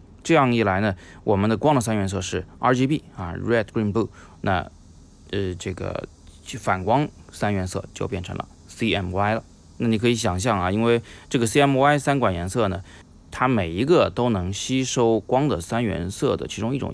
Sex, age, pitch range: male, 20-39, 90-115 Hz